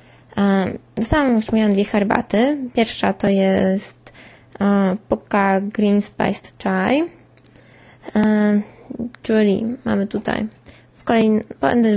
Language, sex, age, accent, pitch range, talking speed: Polish, female, 20-39, native, 195-220 Hz, 95 wpm